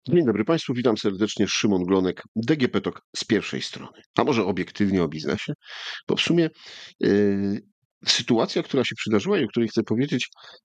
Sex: male